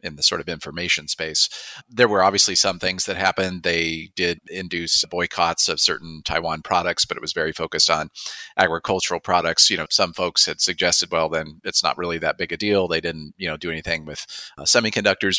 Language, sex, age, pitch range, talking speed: English, male, 40-59, 80-95 Hz, 205 wpm